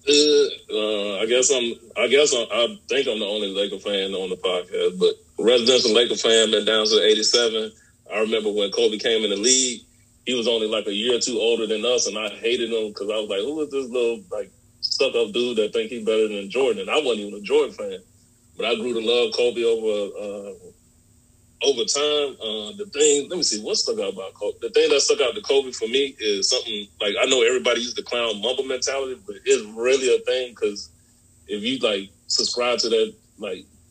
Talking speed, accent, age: 225 wpm, American, 30-49